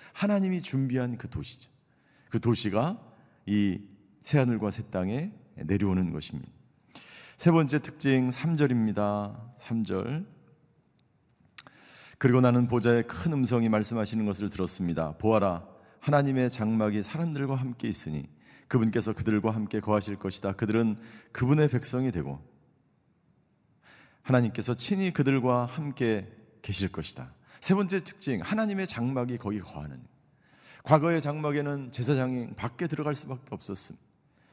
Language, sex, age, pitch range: Korean, male, 40-59, 105-145 Hz